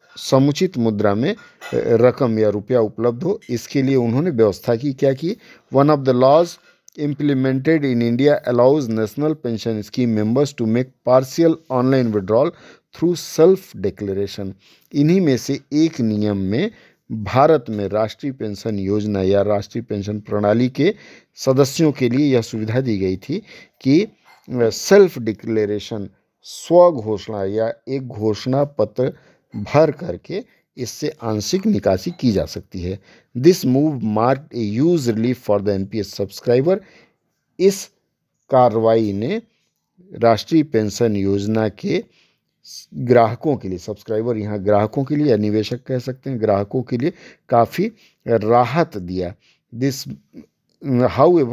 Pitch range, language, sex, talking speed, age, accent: 110-145 Hz, Hindi, male, 130 wpm, 50-69, native